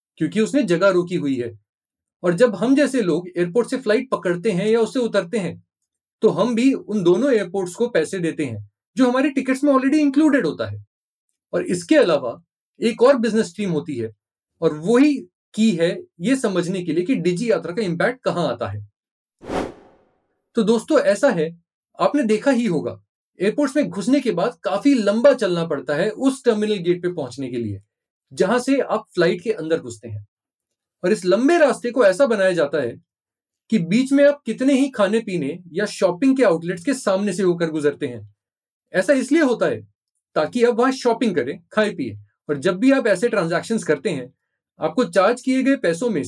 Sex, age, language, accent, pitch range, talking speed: male, 30-49, Hindi, native, 165-255 Hz, 190 wpm